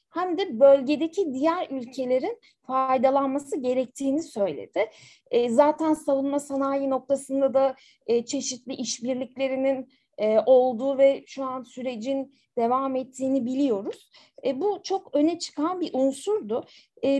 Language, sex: Turkish, female